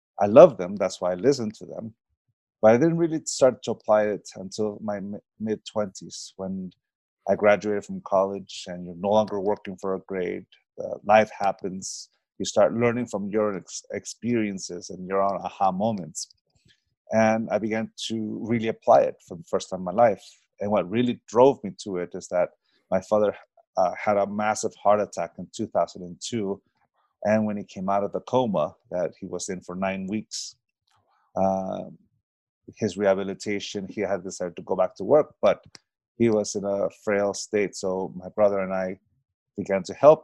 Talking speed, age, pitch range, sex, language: 180 wpm, 30-49, 95-110 Hz, male, English